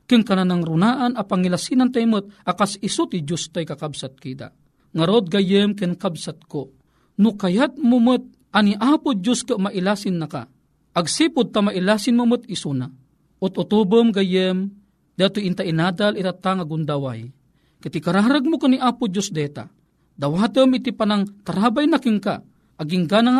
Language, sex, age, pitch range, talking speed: Filipino, male, 40-59, 160-215 Hz, 145 wpm